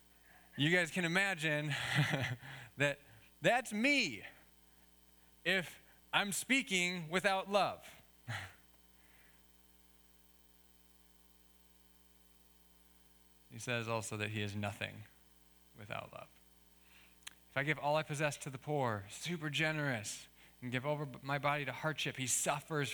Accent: American